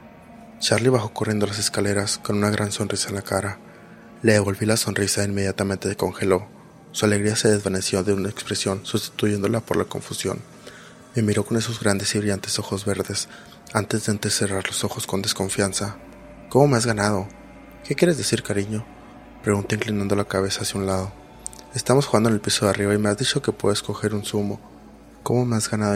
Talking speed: 190 wpm